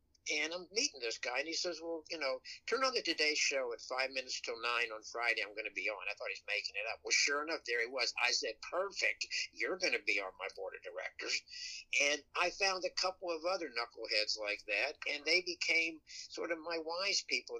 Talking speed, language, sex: 240 wpm, English, male